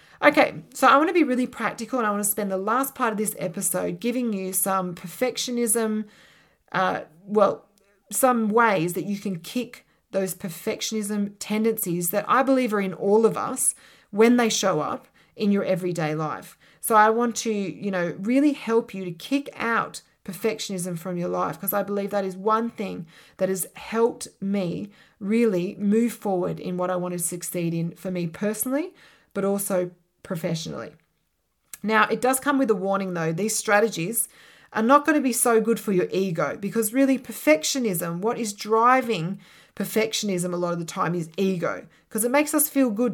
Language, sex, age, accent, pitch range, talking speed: English, female, 20-39, Australian, 180-230 Hz, 185 wpm